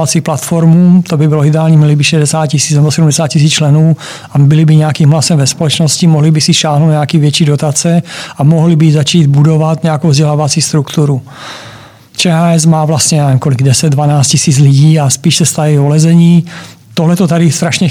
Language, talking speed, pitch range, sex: Czech, 170 wpm, 150-165 Hz, male